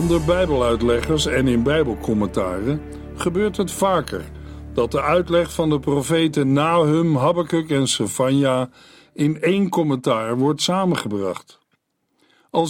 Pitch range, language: 130-170 Hz, Dutch